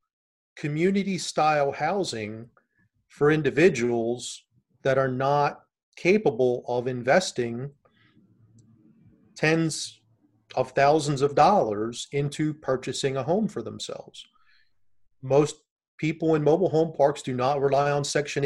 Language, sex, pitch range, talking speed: English, male, 120-155 Hz, 105 wpm